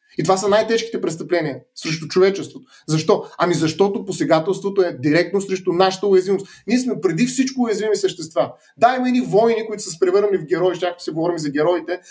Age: 30-49